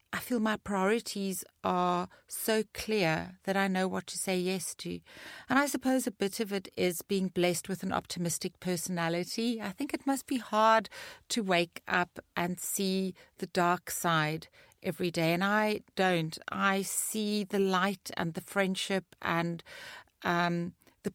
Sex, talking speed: female, 165 wpm